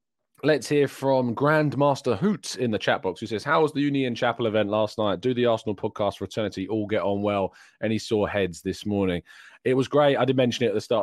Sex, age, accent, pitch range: male, 20-39, British, 95-120 Hz